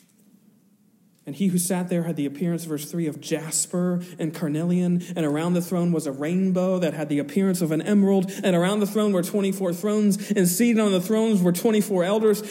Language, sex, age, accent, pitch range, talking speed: English, male, 40-59, American, 175-220 Hz, 205 wpm